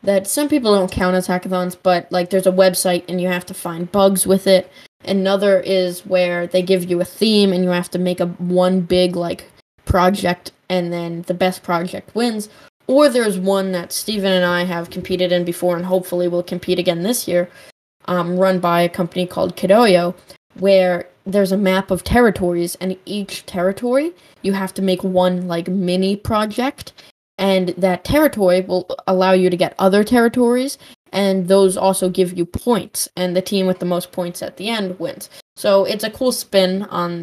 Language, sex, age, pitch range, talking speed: English, female, 10-29, 180-200 Hz, 190 wpm